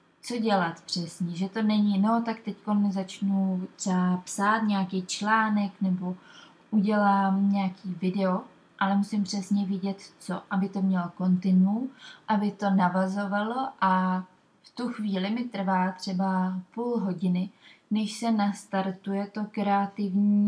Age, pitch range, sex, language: 20-39, 190-215 Hz, female, Czech